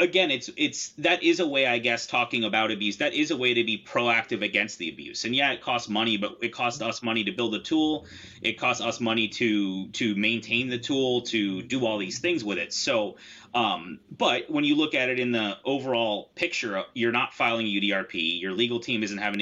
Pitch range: 105-130 Hz